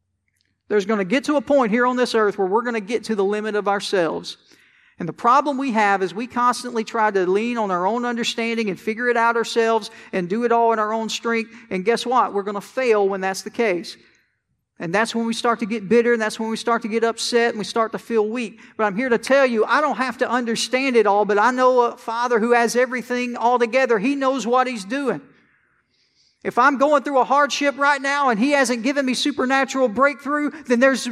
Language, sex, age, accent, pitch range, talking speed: English, male, 40-59, American, 225-270 Hz, 245 wpm